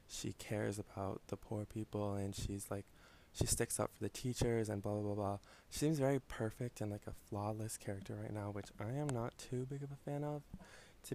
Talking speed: 225 wpm